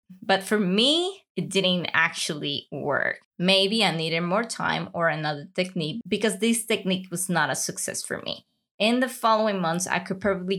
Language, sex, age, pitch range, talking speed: English, female, 20-39, 180-225 Hz, 175 wpm